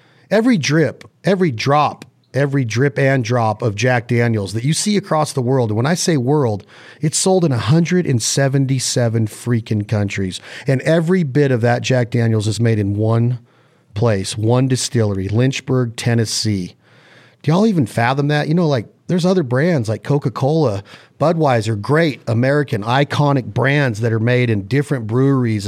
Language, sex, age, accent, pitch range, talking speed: English, male, 40-59, American, 115-145 Hz, 155 wpm